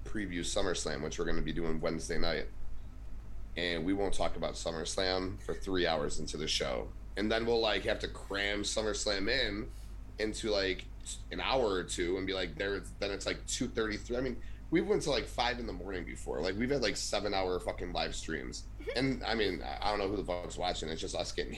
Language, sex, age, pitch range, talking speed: English, male, 30-49, 90-105 Hz, 225 wpm